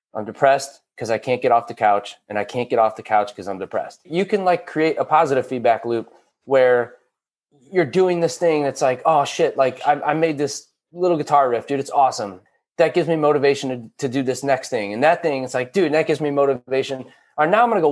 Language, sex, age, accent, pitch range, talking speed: English, male, 30-49, American, 125-155 Hz, 250 wpm